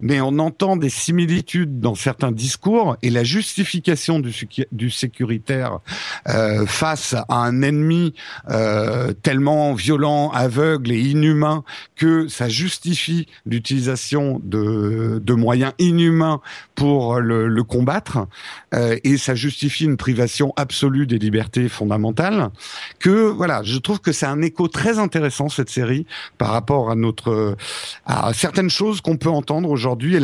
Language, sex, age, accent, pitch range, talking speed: French, male, 50-69, French, 120-170 Hz, 145 wpm